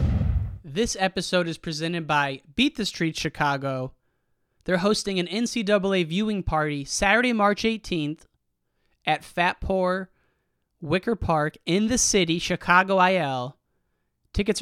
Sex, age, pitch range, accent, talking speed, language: male, 30-49, 140-185 Hz, American, 120 wpm, English